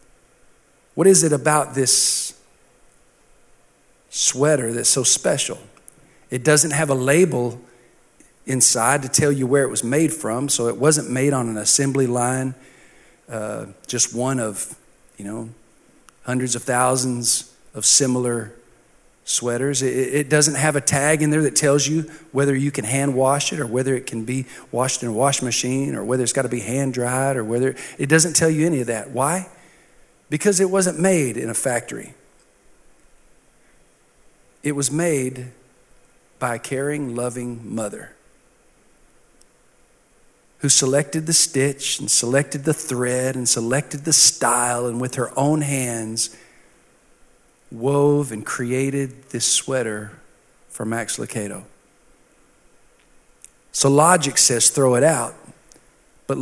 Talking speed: 145 wpm